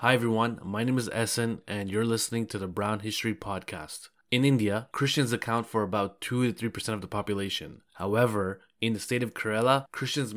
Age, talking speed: 20-39, 180 wpm